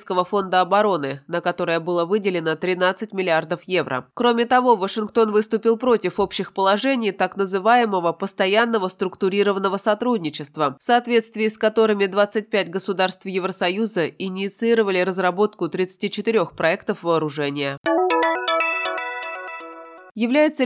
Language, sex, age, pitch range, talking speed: Russian, female, 20-39, 180-225 Hz, 100 wpm